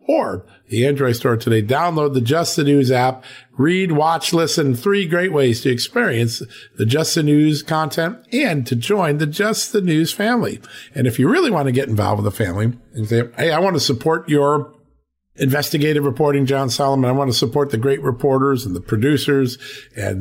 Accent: American